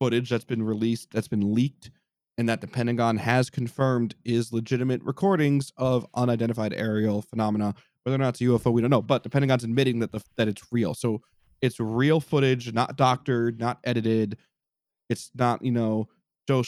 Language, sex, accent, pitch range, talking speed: English, male, American, 115-135 Hz, 185 wpm